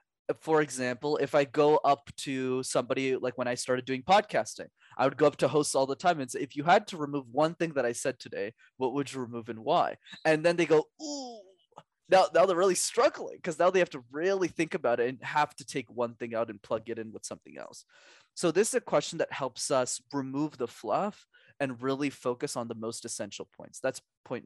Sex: male